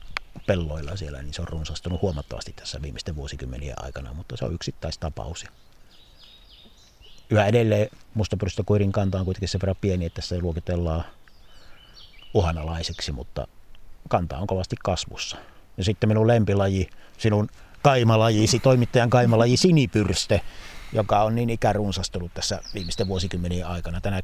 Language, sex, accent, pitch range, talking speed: Finnish, male, native, 80-100 Hz, 130 wpm